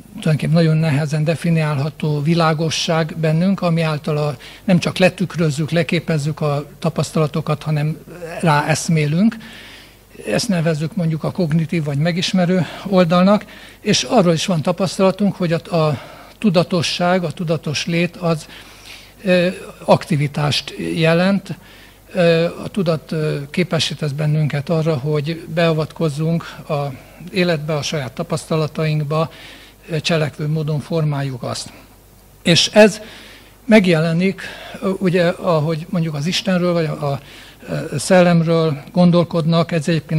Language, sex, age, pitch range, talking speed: Hungarian, male, 60-79, 150-175 Hz, 105 wpm